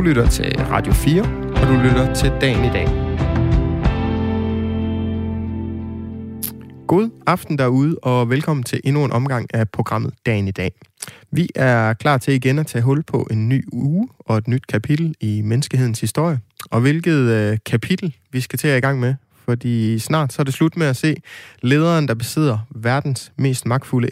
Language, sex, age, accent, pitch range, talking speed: Danish, male, 20-39, native, 110-135 Hz, 170 wpm